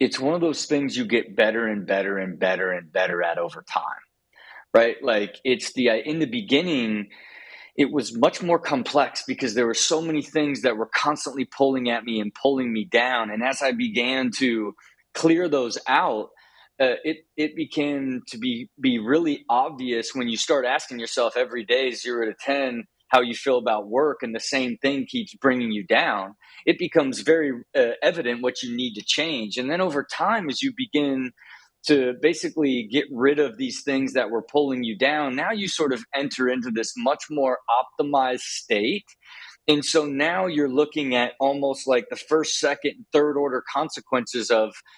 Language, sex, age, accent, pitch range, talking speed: English, male, 30-49, American, 120-155 Hz, 190 wpm